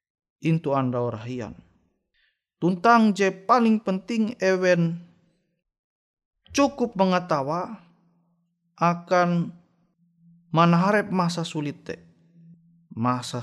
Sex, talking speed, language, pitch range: male, 65 wpm, Indonesian, 125-180 Hz